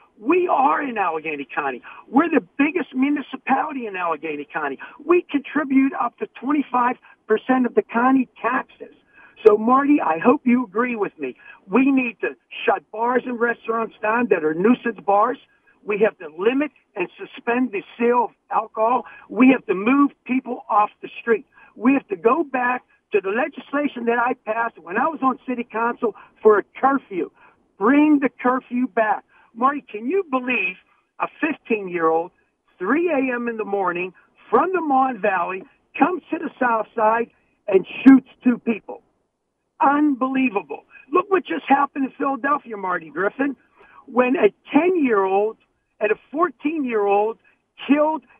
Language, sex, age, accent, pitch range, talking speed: English, male, 50-69, American, 220-280 Hz, 155 wpm